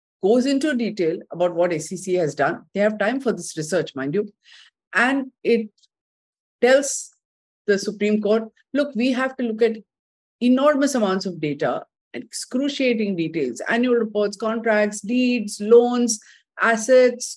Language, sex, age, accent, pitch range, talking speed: English, female, 50-69, Indian, 190-240 Hz, 140 wpm